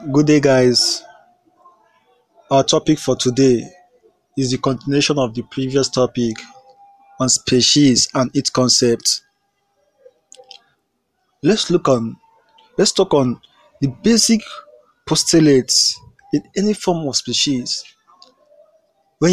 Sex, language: male, English